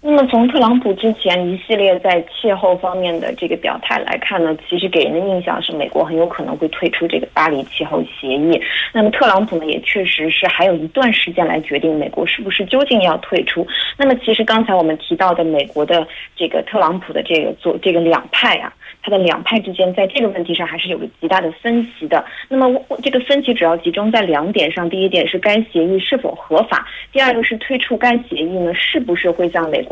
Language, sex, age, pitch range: Korean, female, 20-39, 165-235 Hz